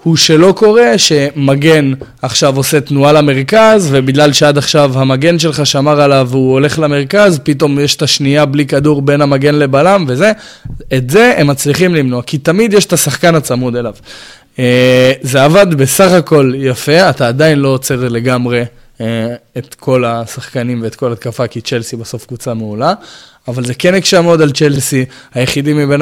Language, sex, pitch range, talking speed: Hebrew, male, 130-150 Hz, 160 wpm